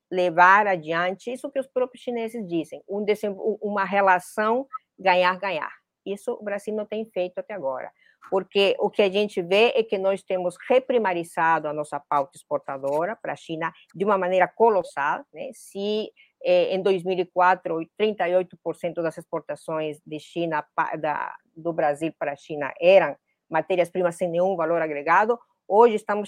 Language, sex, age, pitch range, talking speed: Portuguese, female, 50-69, 165-210 Hz, 150 wpm